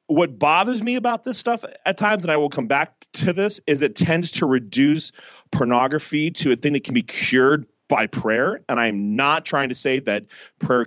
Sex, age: male, 30-49